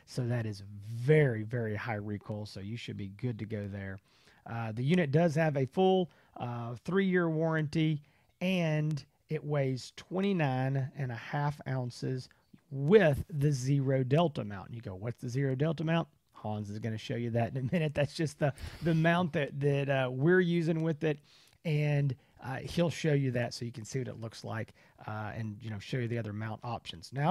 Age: 40-59